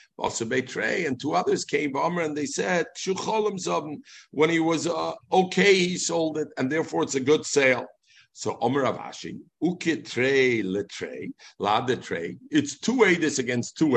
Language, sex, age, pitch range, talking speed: English, male, 50-69, 135-215 Hz, 135 wpm